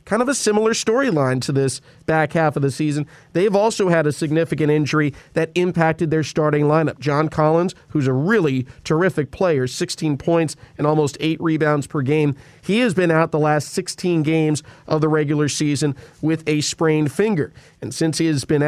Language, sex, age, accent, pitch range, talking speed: English, male, 40-59, American, 145-170 Hz, 190 wpm